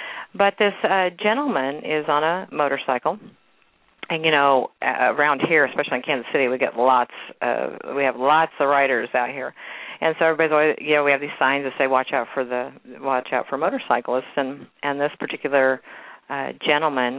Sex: female